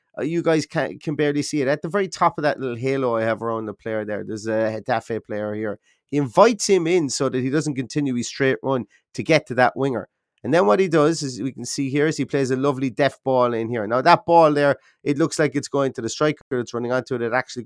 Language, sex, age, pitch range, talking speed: English, male, 30-49, 115-145 Hz, 275 wpm